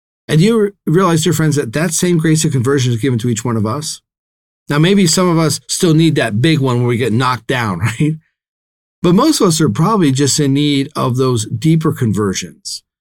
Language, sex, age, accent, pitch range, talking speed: English, male, 40-59, American, 125-165 Hz, 220 wpm